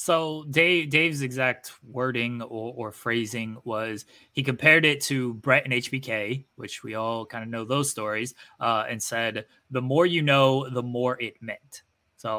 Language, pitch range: English, 115-145 Hz